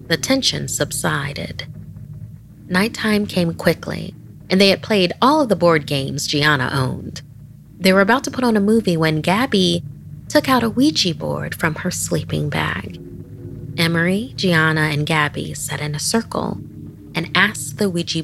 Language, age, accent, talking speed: English, 30-49, American, 160 wpm